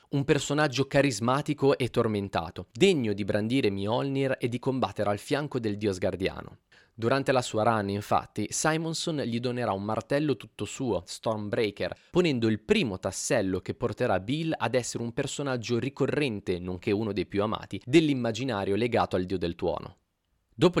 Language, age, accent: Italian, 30-49, native